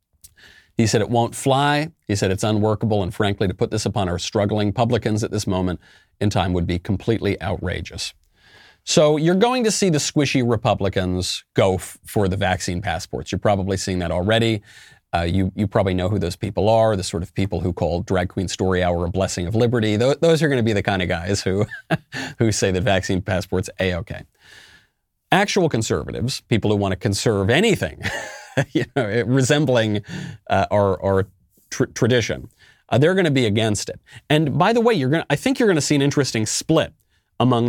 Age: 40-59